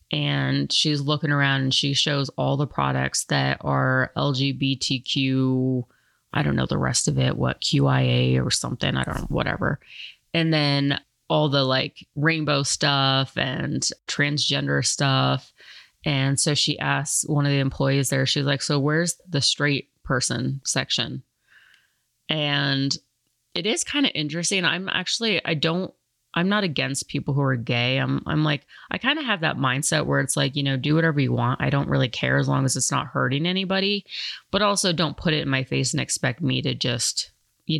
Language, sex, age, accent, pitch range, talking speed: English, female, 30-49, American, 130-150 Hz, 185 wpm